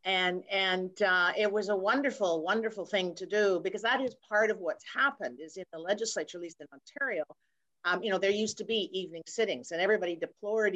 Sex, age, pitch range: female, 50-69, 185-220 Hz